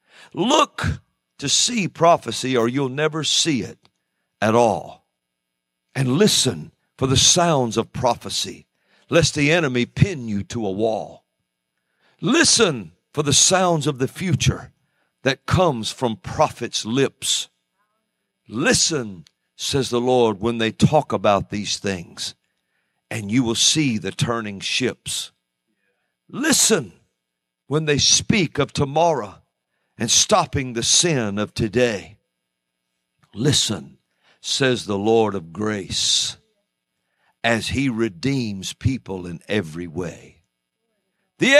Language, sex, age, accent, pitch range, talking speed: English, male, 50-69, American, 95-150 Hz, 115 wpm